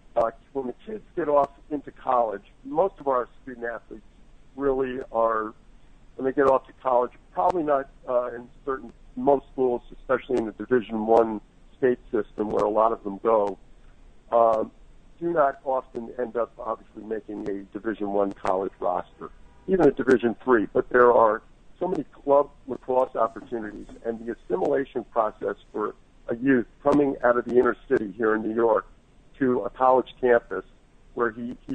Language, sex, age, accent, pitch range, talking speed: English, male, 50-69, American, 110-130 Hz, 170 wpm